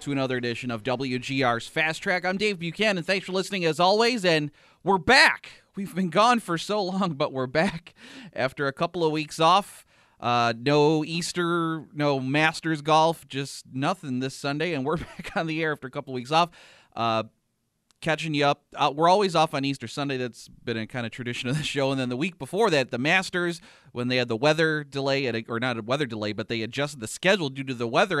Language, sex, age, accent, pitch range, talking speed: English, male, 30-49, American, 115-155 Hz, 220 wpm